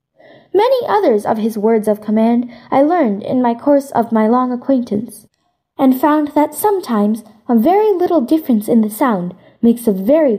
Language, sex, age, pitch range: Chinese, female, 10-29, 220-335 Hz